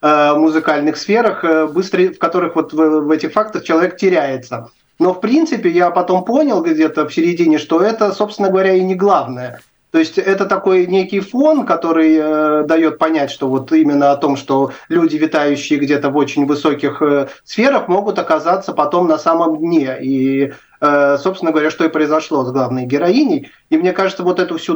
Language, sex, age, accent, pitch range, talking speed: Russian, male, 30-49, native, 140-180 Hz, 170 wpm